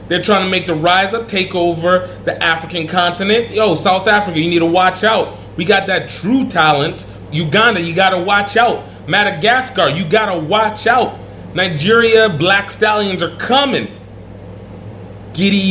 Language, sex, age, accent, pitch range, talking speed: English, male, 30-49, American, 125-180 Hz, 165 wpm